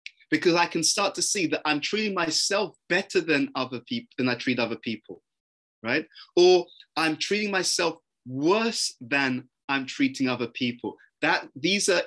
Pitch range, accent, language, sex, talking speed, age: 145-210 Hz, British, English, male, 160 wpm, 20-39